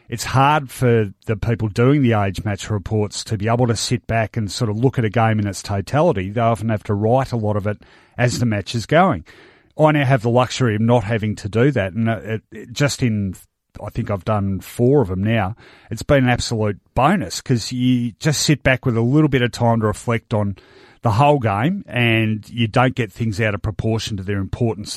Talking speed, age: 230 wpm, 40-59